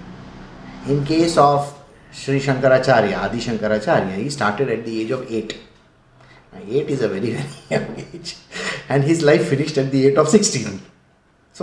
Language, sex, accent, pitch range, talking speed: English, male, Indian, 135-205 Hz, 160 wpm